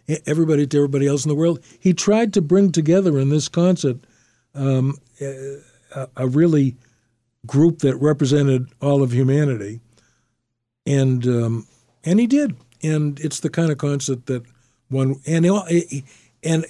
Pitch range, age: 125-155 Hz, 60-79